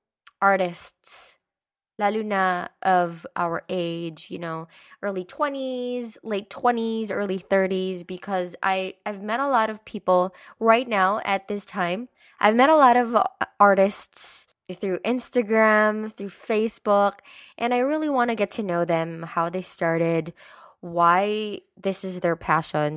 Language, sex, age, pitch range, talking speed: Filipino, female, 20-39, 180-235 Hz, 140 wpm